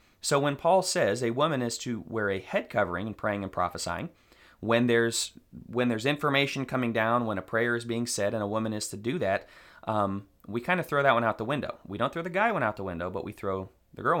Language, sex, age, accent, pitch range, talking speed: English, male, 30-49, American, 100-130 Hz, 255 wpm